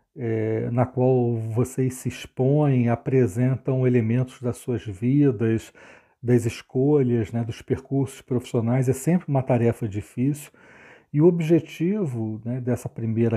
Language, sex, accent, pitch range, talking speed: Portuguese, male, Brazilian, 115-135 Hz, 120 wpm